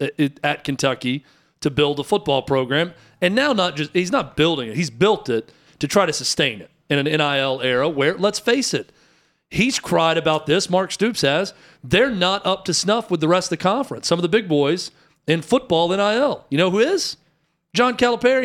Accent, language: American, English